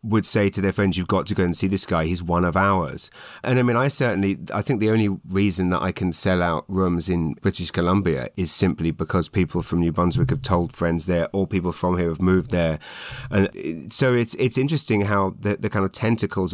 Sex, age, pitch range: male, 30-49, 85-100 Hz